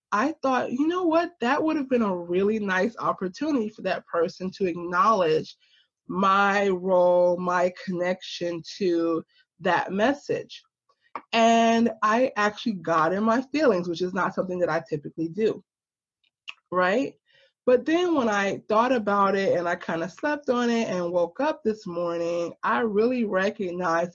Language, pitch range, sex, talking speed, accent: English, 180-245 Hz, female, 155 wpm, American